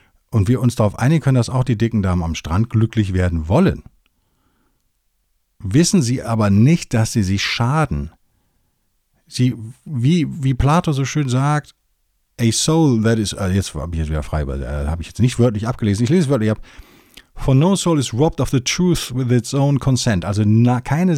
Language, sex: German, male